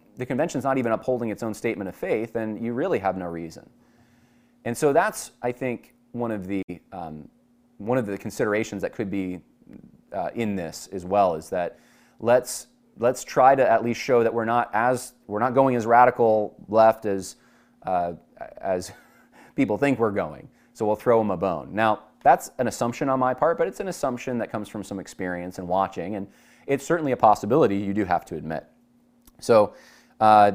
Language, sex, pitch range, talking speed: English, male, 100-130 Hz, 195 wpm